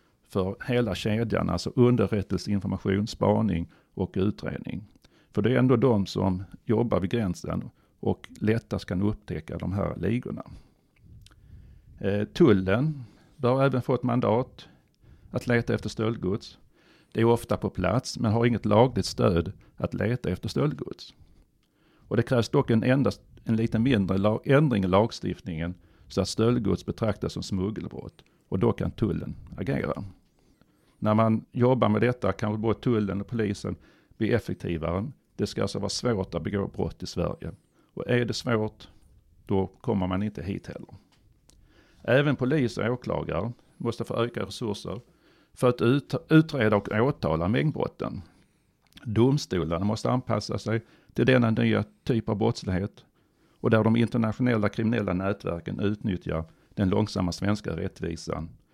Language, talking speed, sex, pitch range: Swedish, 140 wpm, male, 95-120 Hz